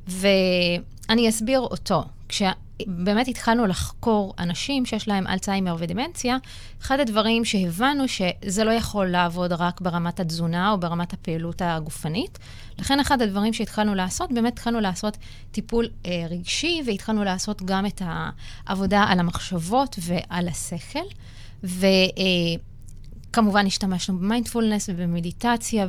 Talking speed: 115 wpm